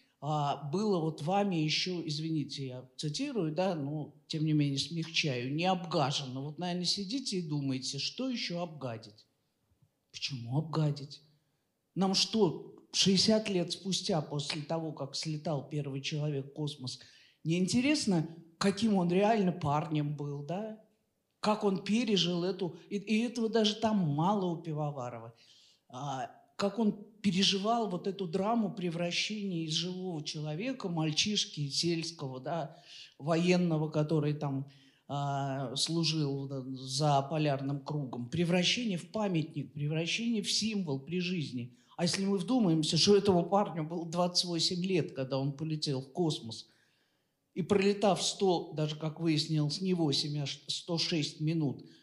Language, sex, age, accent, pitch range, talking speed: Russian, male, 50-69, native, 145-195 Hz, 130 wpm